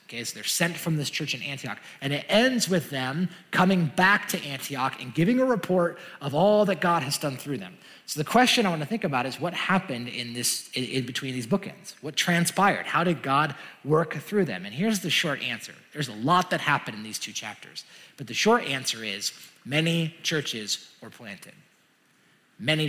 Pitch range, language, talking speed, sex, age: 130-175 Hz, English, 205 wpm, male, 30-49